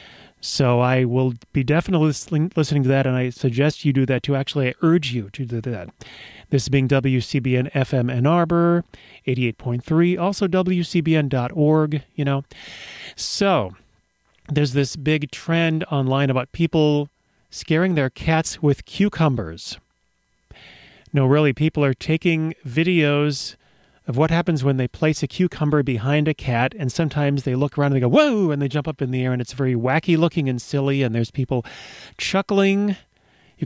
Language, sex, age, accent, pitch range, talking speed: English, male, 30-49, American, 130-160 Hz, 160 wpm